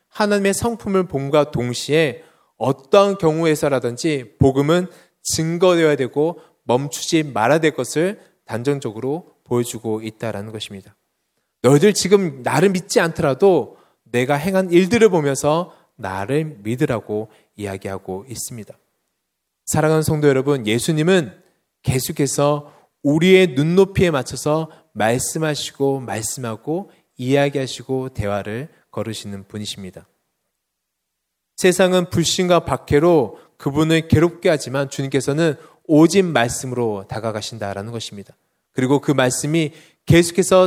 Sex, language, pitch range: male, Korean, 120-170 Hz